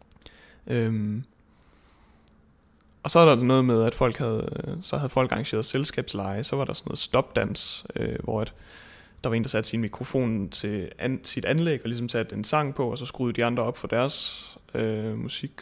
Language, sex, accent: Danish, male, native